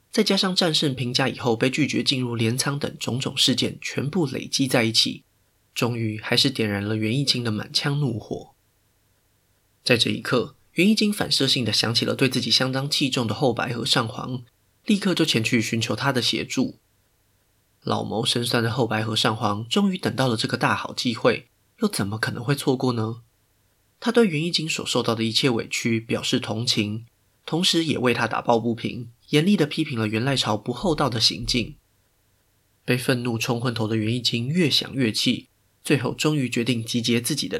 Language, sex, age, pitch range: Chinese, male, 20-39, 110-140 Hz